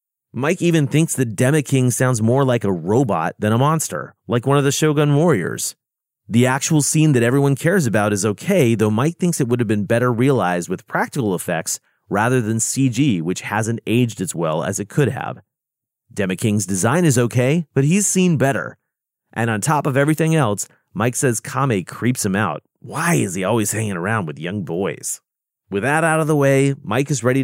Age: 30-49